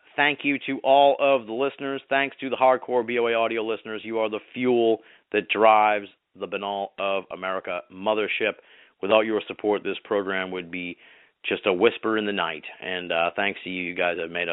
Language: English